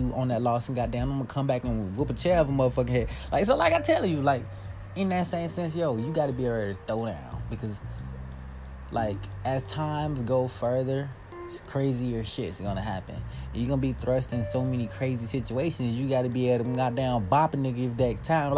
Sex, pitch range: male, 105-130 Hz